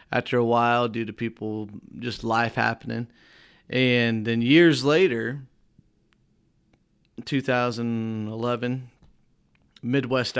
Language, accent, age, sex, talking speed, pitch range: English, American, 30-49, male, 85 wpm, 115-135 Hz